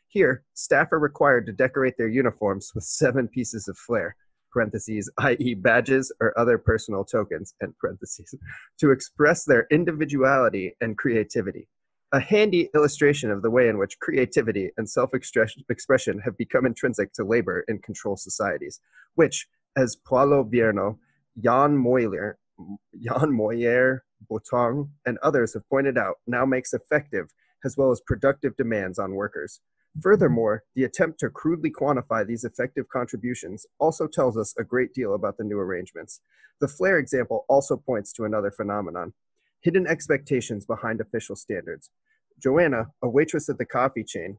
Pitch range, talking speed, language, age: 115-150 Hz, 150 wpm, English, 30-49